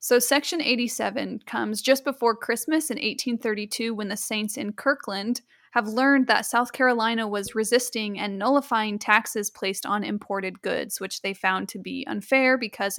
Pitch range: 210-255 Hz